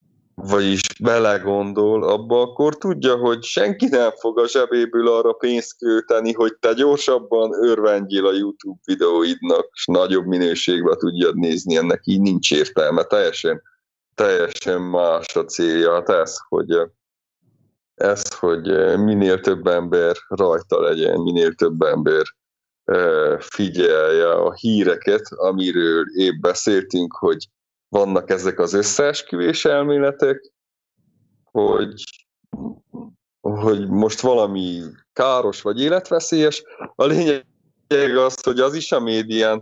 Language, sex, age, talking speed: English, male, 30-49, 110 wpm